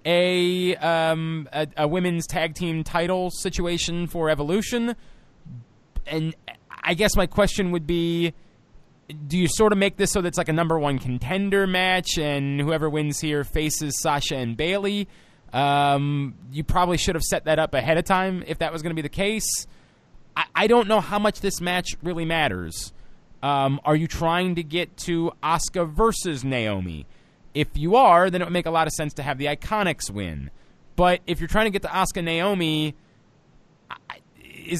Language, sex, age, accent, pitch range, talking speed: English, male, 20-39, American, 150-190 Hz, 185 wpm